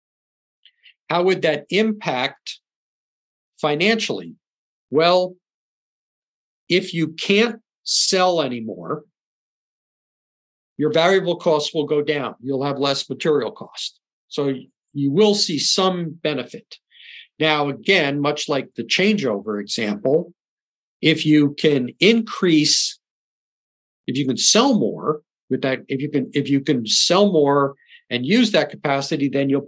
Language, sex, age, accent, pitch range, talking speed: English, male, 50-69, American, 140-180 Hz, 120 wpm